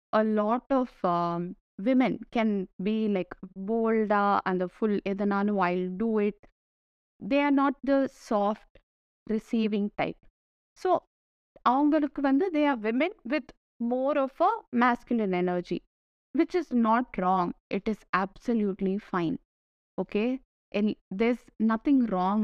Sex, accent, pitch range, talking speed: female, native, 190-260 Hz, 130 wpm